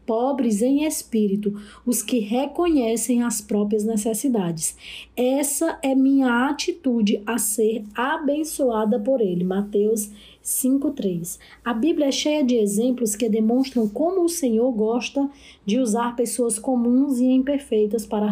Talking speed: 130 wpm